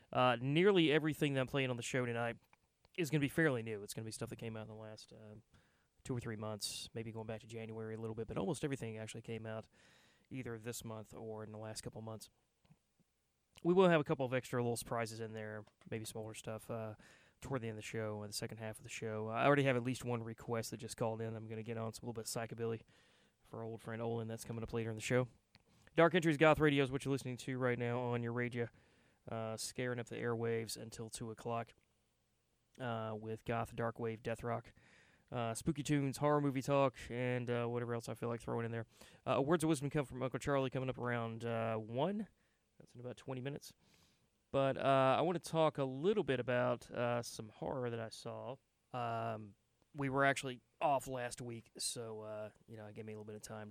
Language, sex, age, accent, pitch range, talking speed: English, male, 20-39, American, 110-130 Hz, 240 wpm